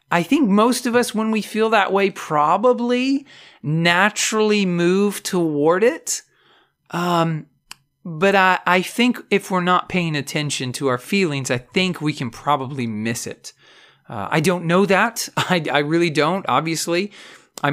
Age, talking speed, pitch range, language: 40-59, 155 wpm, 145-195 Hz, English